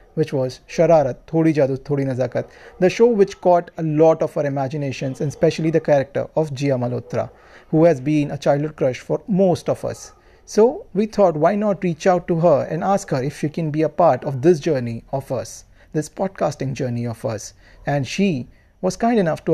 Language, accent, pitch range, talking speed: English, Indian, 140-180 Hz, 205 wpm